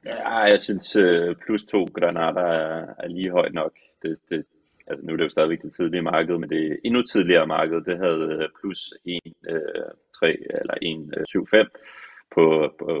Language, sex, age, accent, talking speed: Danish, male, 30-49, native, 165 wpm